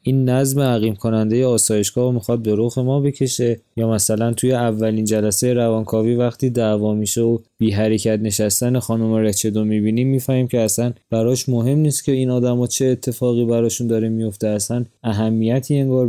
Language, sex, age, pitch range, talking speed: Persian, male, 20-39, 110-125 Hz, 170 wpm